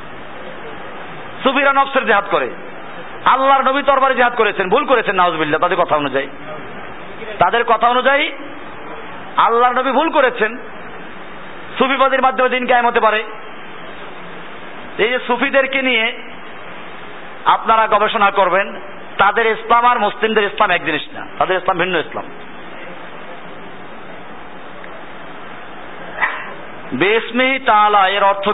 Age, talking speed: 50-69, 35 wpm